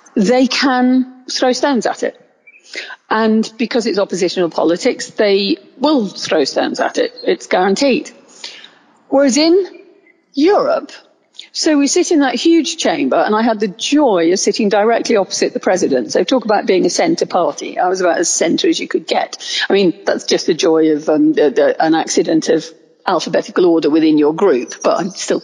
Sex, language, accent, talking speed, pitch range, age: female, English, British, 175 wpm, 180-295 Hz, 50-69